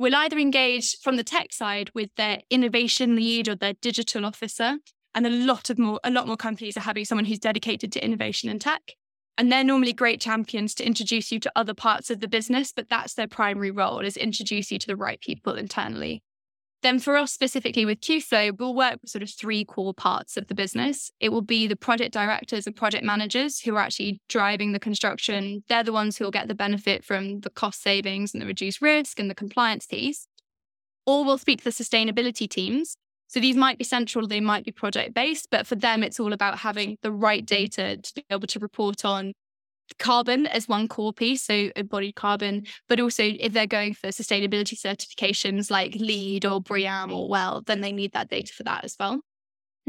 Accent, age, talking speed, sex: British, 10-29, 215 wpm, female